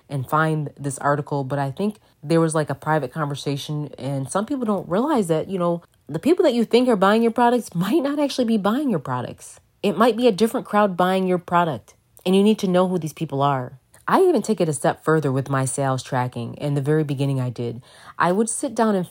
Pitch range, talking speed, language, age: 145-190 Hz, 240 wpm, English, 30-49